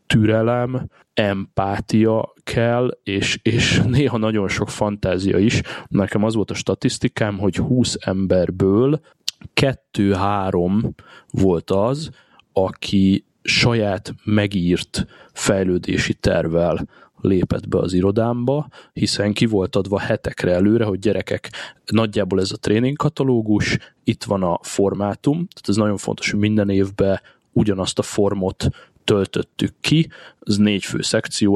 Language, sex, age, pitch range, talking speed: Hungarian, male, 20-39, 95-115 Hz, 120 wpm